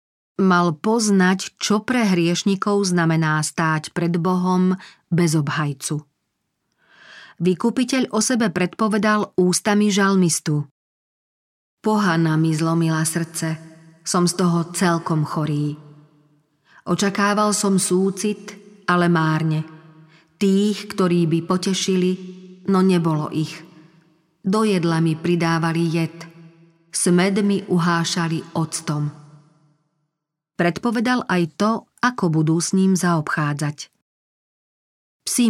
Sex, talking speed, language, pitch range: female, 95 wpm, Slovak, 160-190 Hz